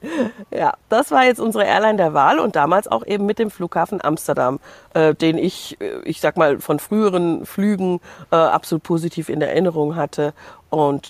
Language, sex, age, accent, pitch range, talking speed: German, female, 50-69, German, 150-180 Hz, 175 wpm